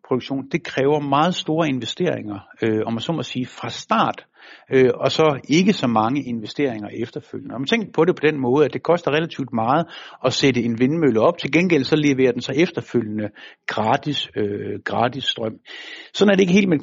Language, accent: Danish, native